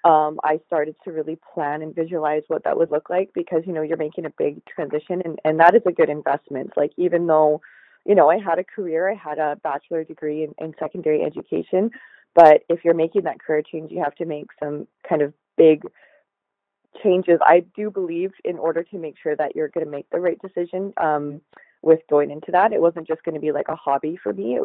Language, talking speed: English, 230 wpm